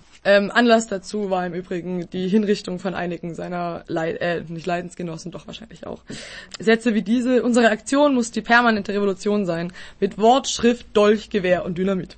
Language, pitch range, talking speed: German, 195-235 Hz, 170 wpm